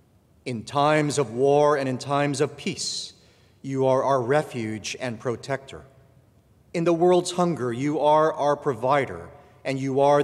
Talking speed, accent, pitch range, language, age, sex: 150 wpm, American, 120-155 Hz, English, 40-59, male